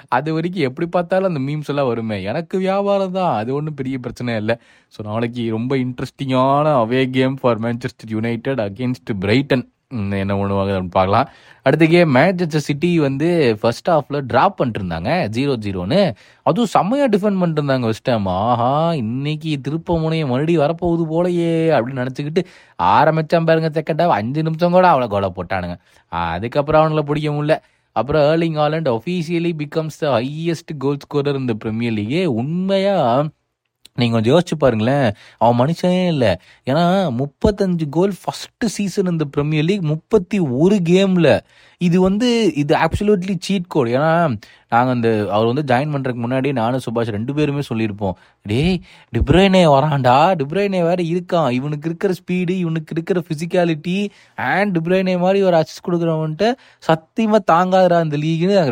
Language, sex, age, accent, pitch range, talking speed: Tamil, male, 20-39, native, 125-180 Hz, 140 wpm